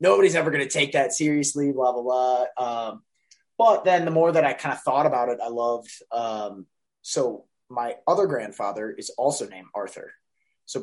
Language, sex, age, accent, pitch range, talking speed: English, male, 20-39, American, 115-150 Hz, 190 wpm